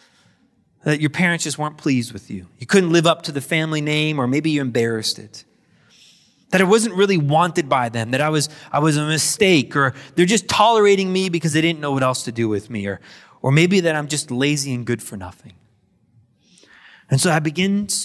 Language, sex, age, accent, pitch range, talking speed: English, male, 20-39, American, 140-180 Hz, 215 wpm